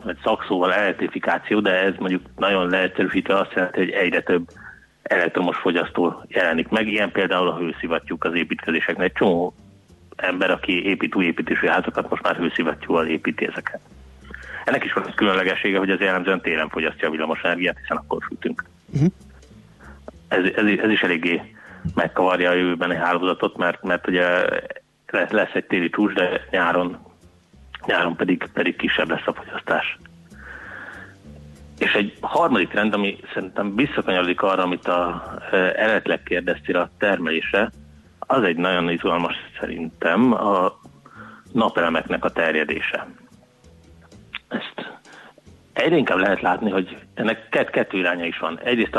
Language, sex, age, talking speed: Hungarian, male, 30-49, 140 wpm